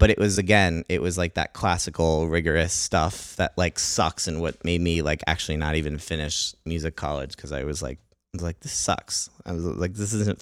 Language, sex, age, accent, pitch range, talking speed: English, male, 30-49, American, 85-105 Hz, 225 wpm